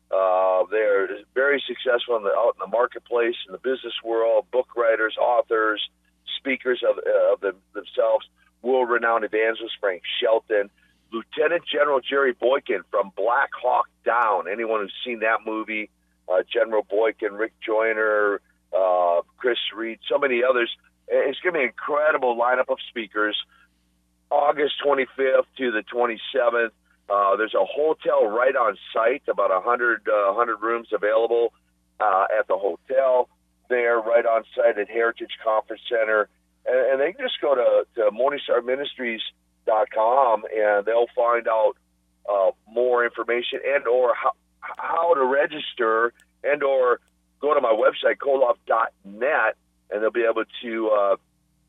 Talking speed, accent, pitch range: 145 wpm, American, 105-130 Hz